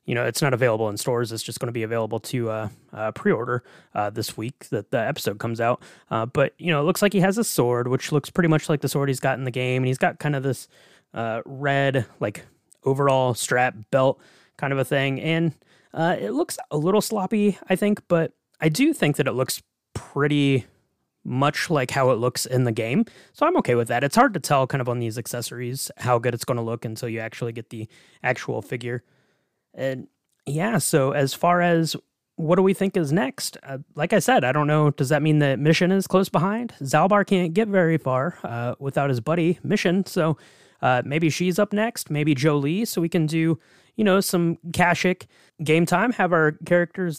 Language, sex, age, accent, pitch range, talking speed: English, male, 20-39, American, 125-175 Hz, 220 wpm